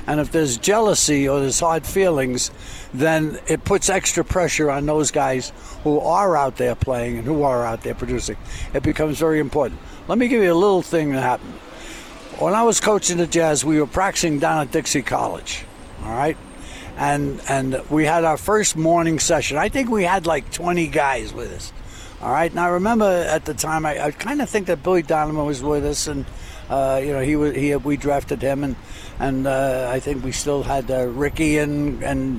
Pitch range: 130-165 Hz